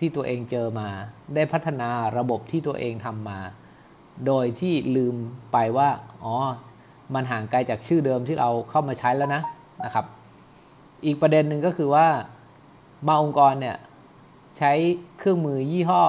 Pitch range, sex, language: 120-150 Hz, male, English